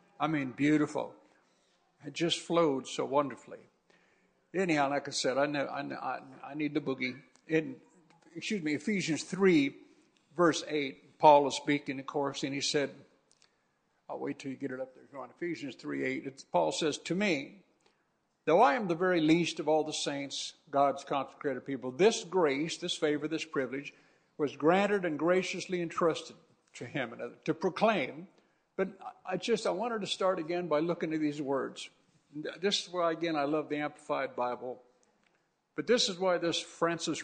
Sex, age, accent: male, 60-79, American